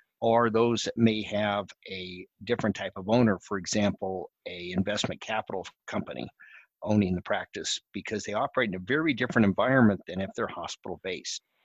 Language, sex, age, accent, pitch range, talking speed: English, male, 60-79, American, 100-120 Hz, 160 wpm